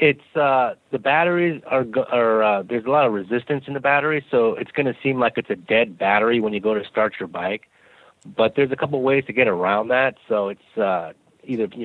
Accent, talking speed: American, 235 wpm